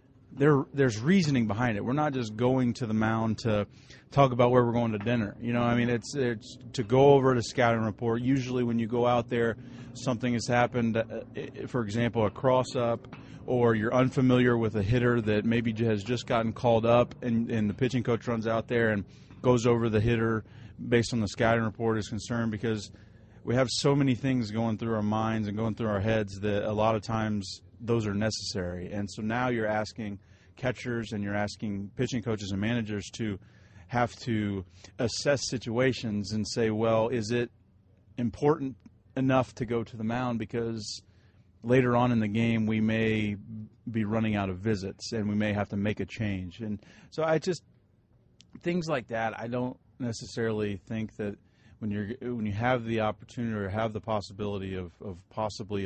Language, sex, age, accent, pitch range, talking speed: English, male, 30-49, American, 105-120 Hz, 190 wpm